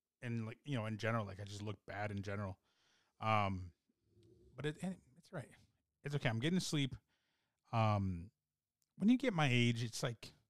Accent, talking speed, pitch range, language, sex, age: American, 185 wpm, 105-145 Hz, English, male, 30-49